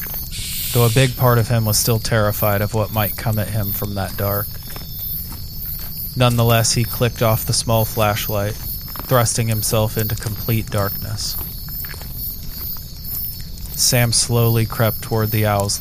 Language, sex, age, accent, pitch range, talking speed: English, male, 30-49, American, 105-120 Hz, 135 wpm